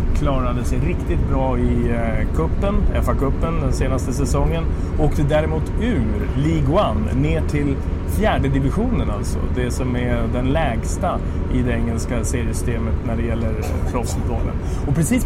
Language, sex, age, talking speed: English, male, 30-49, 135 wpm